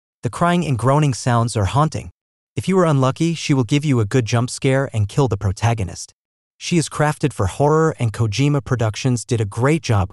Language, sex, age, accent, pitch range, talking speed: English, male, 30-49, American, 110-145 Hz, 205 wpm